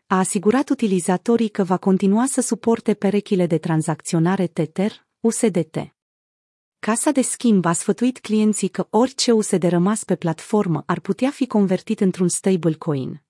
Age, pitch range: 30-49, 170-220 Hz